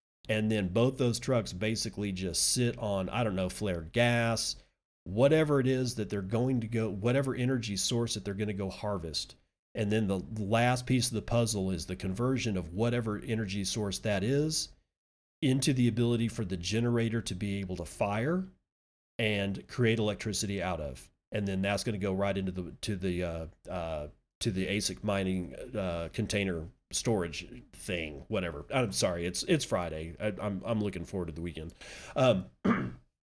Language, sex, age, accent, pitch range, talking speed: English, male, 40-59, American, 95-115 Hz, 180 wpm